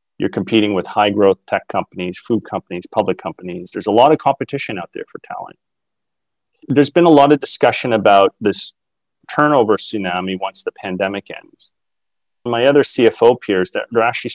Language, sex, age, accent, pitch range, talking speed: English, male, 30-49, American, 95-125 Hz, 165 wpm